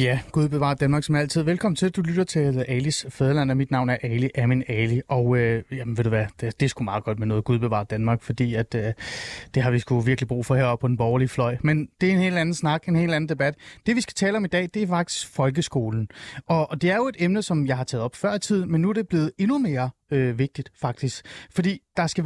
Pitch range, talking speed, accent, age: 130-180 Hz, 280 wpm, native, 30-49